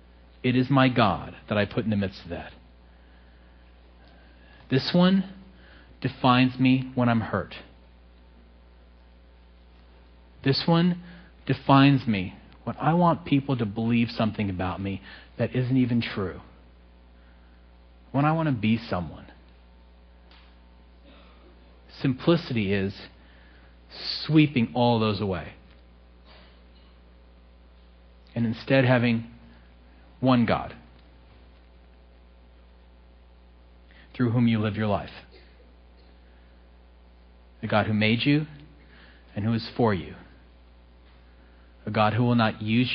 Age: 40-59